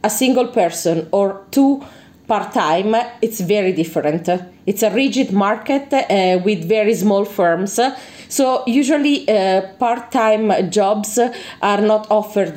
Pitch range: 185-240 Hz